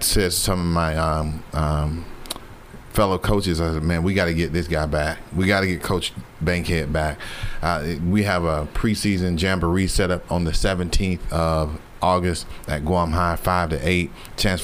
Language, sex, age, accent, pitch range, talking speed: English, male, 30-49, American, 85-110 Hz, 180 wpm